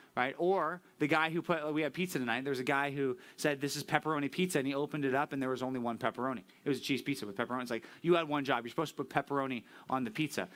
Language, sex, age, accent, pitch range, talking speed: English, male, 30-49, American, 135-175 Hz, 300 wpm